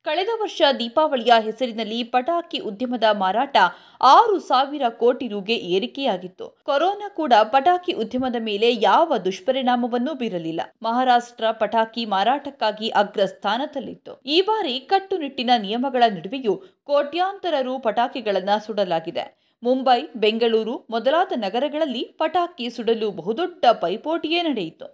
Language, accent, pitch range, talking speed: Kannada, native, 225-315 Hz, 100 wpm